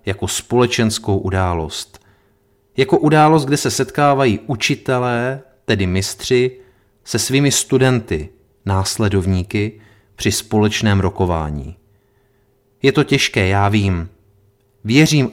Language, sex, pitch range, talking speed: Czech, male, 100-125 Hz, 95 wpm